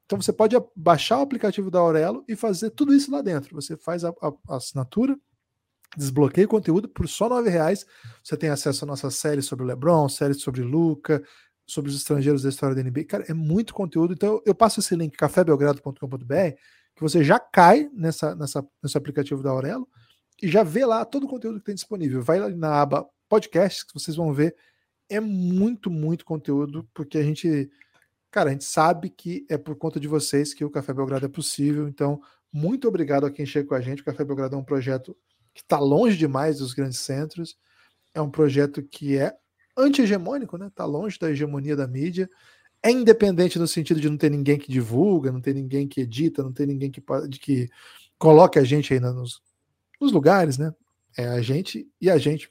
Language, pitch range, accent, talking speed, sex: Portuguese, 140-180 Hz, Brazilian, 200 wpm, male